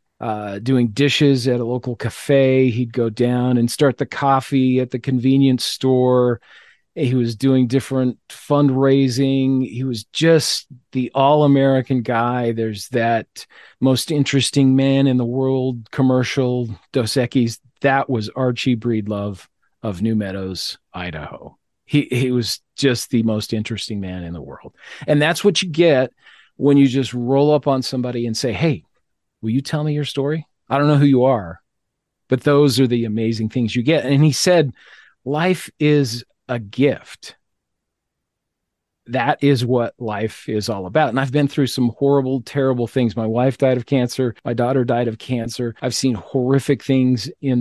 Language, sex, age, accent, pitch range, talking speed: English, male, 40-59, American, 115-135 Hz, 165 wpm